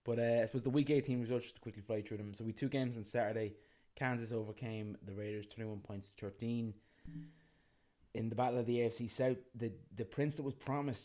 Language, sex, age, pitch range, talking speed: English, male, 20-39, 100-115 Hz, 225 wpm